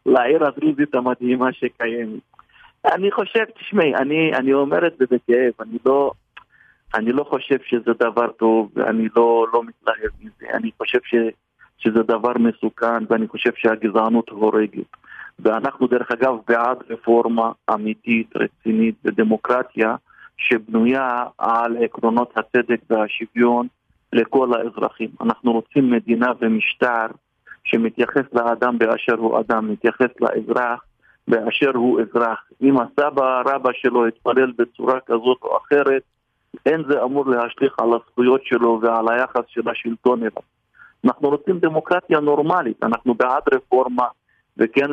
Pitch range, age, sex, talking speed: 115-135 Hz, 40-59, male, 125 wpm